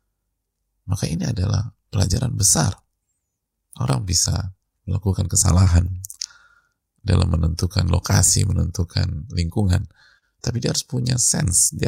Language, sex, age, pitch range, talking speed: Indonesian, male, 30-49, 90-110 Hz, 100 wpm